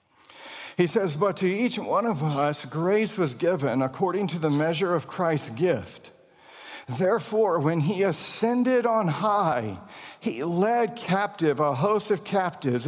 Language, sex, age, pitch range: English, male, 50-69, 145-200 Hz